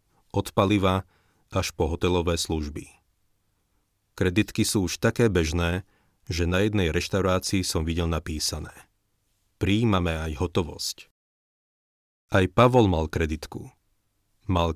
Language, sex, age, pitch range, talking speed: Slovak, male, 40-59, 85-100 Hz, 105 wpm